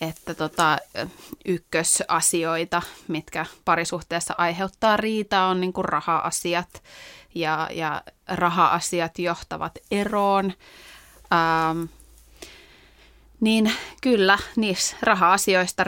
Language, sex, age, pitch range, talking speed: Finnish, female, 30-49, 165-200 Hz, 80 wpm